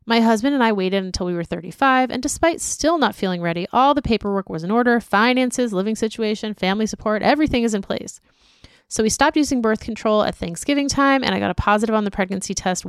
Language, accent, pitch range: English, American, 190-240 Hz